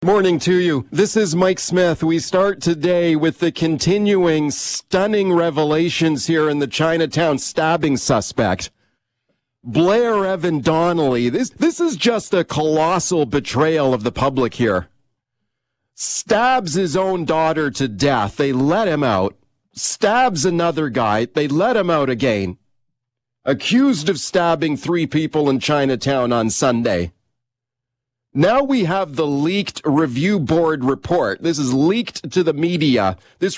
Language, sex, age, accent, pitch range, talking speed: English, male, 40-59, American, 130-180 Hz, 140 wpm